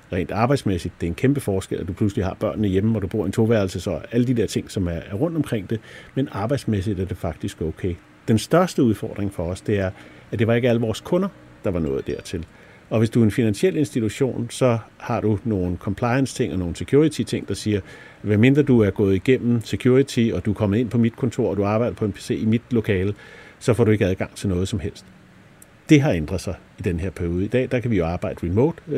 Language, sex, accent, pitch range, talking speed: Danish, male, native, 95-125 Hz, 250 wpm